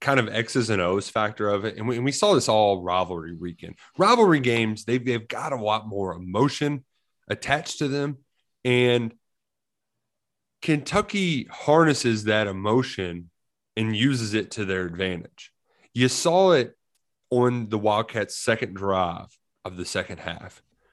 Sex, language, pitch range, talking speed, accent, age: male, English, 105-135 Hz, 145 wpm, American, 30-49